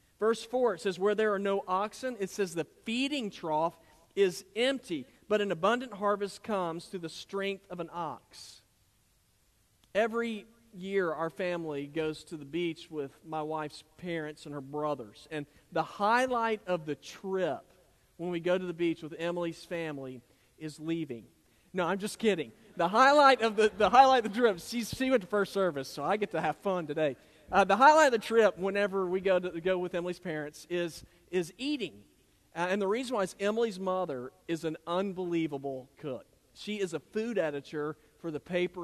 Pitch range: 155-200 Hz